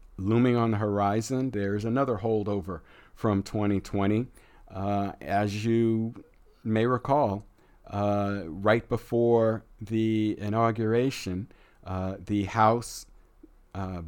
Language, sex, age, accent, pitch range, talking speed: English, male, 50-69, American, 95-110 Hz, 100 wpm